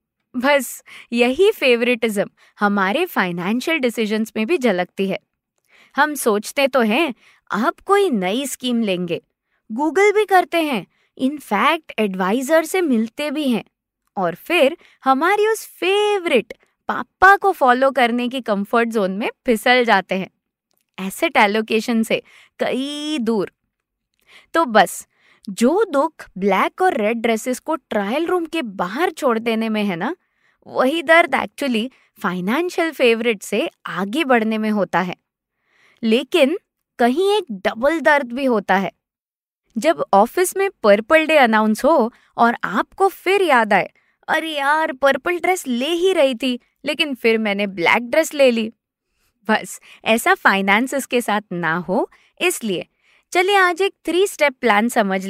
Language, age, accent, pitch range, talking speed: Hindi, 20-39, native, 215-320 Hz, 140 wpm